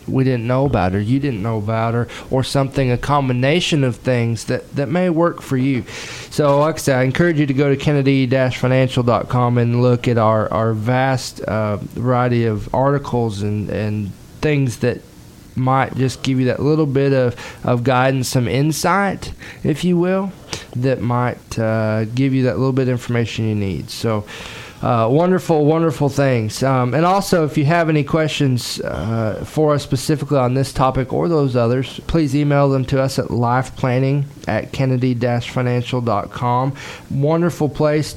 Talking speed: 170 wpm